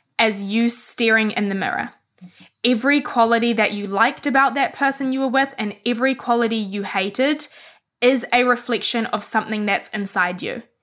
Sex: female